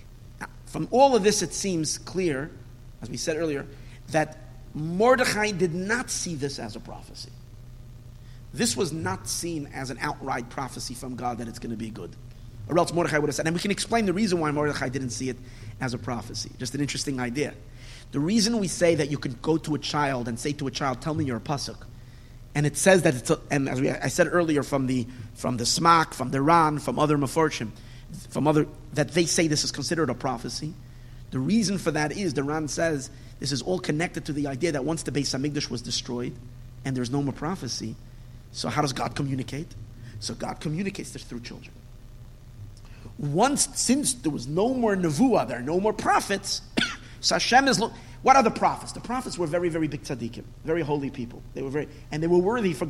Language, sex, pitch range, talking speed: English, male, 120-165 Hz, 215 wpm